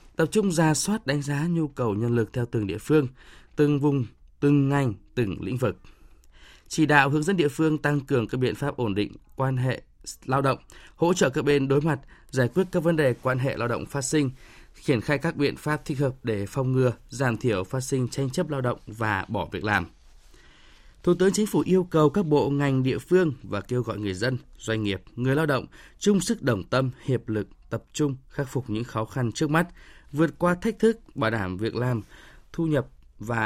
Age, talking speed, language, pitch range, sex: 20-39, 220 wpm, Vietnamese, 120-155 Hz, male